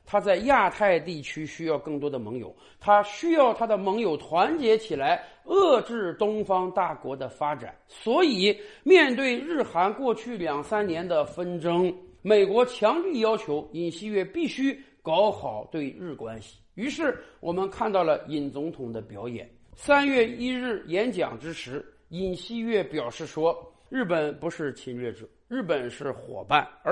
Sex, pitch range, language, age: male, 185-280 Hz, Chinese, 50-69